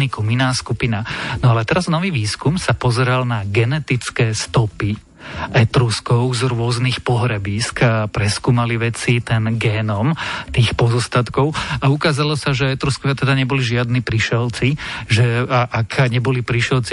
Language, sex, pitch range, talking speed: Slovak, male, 120-135 Hz, 130 wpm